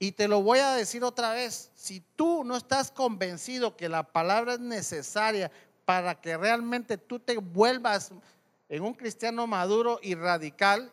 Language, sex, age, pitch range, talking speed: Spanish, male, 40-59, 190-250 Hz, 165 wpm